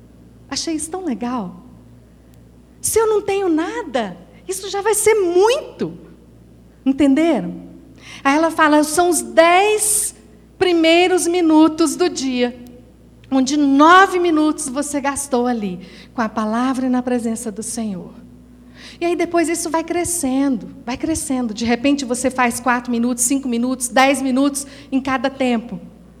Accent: Brazilian